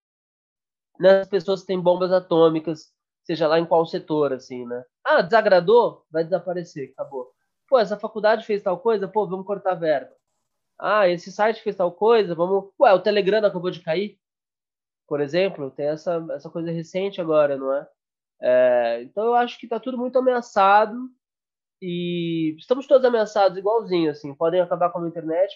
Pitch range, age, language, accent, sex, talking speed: 150-205 Hz, 20-39, Portuguese, Brazilian, male, 170 wpm